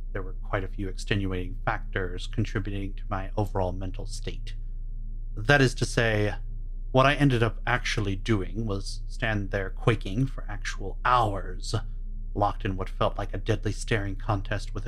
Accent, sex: American, male